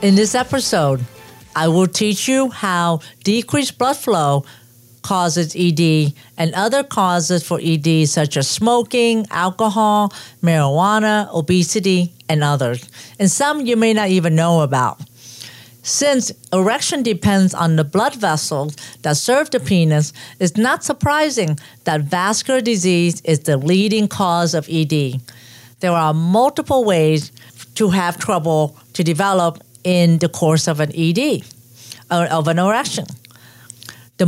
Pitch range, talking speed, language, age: 150-205 Hz, 135 wpm, English, 50-69